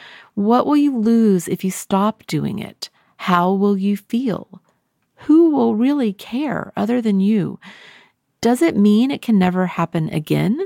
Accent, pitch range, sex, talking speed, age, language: American, 160-210 Hz, female, 160 wpm, 40-59, English